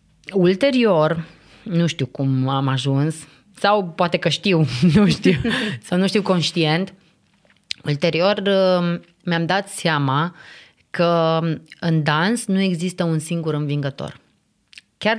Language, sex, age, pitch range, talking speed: Romanian, female, 20-39, 155-185 Hz, 115 wpm